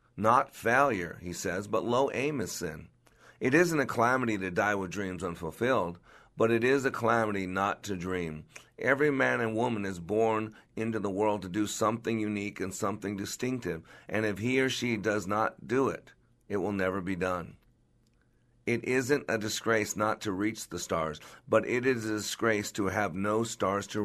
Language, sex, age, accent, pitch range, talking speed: English, male, 50-69, American, 100-120 Hz, 185 wpm